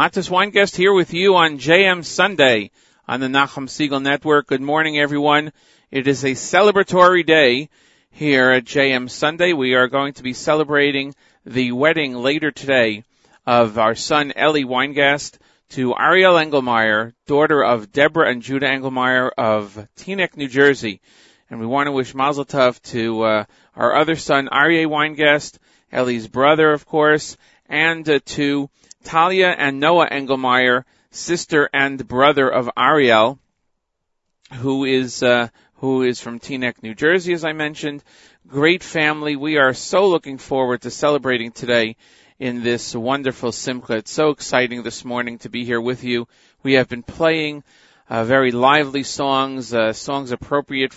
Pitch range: 125-150 Hz